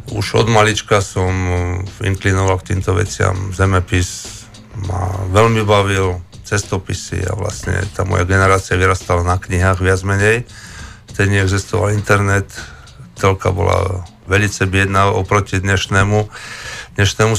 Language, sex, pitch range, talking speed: Slovak, male, 95-110 Hz, 115 wpm